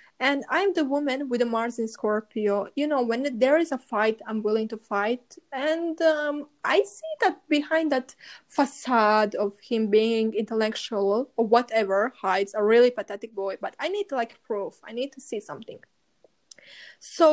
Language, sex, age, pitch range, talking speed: English, female, 20-39, 215-275 Hz, 175 wpm